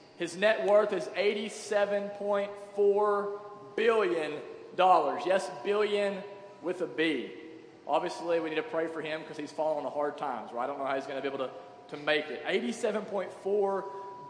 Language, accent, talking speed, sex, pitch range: English, American, 160 wpm, male, 190-225 Hz